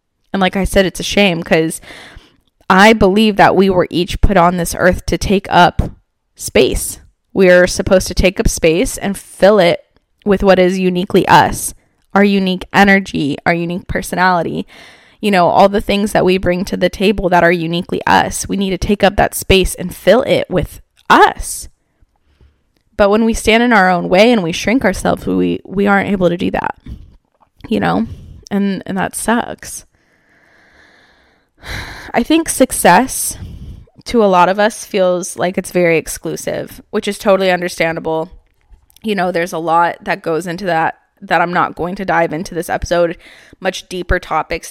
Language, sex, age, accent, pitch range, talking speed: English, female, 10-29, American, 170-200 Hz, 180 wpm